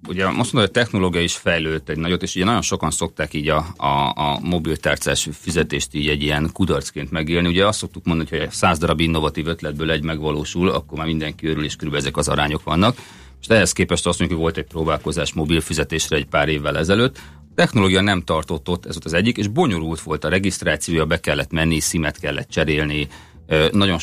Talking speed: 205 wpm